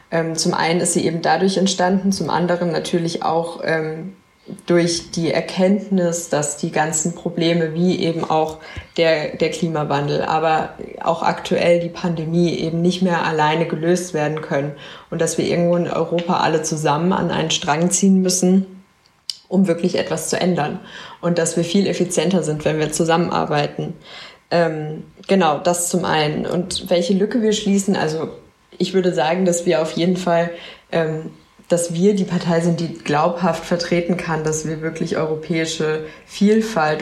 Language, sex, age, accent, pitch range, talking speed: German, female, 20-39, German, 160-180 Hz, 160 wpm